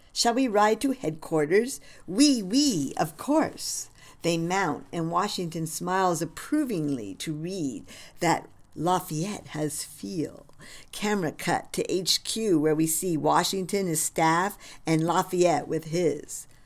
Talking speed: 130 wpm